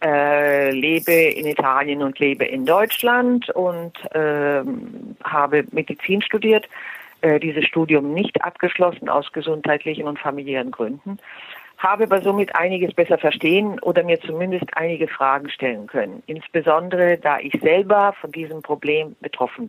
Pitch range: 145-205 Hz